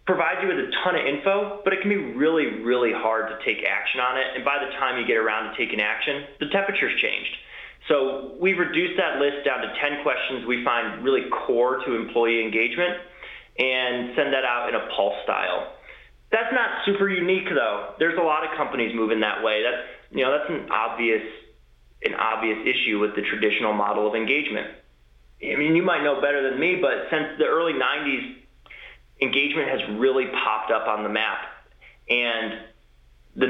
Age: 30-49